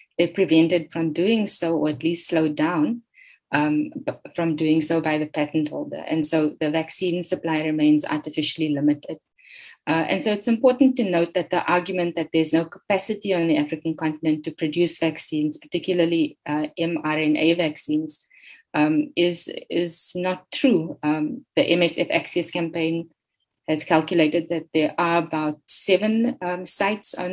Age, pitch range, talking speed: 20-39, 160-185 Hz, 155 wpm